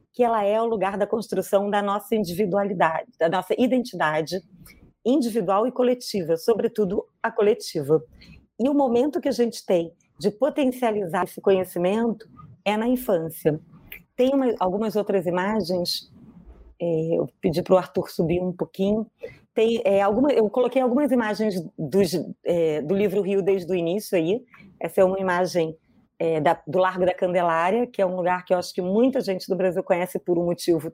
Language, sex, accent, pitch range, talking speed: Portuguese, female, Brazilian, 180-230 Hz, 175 wpm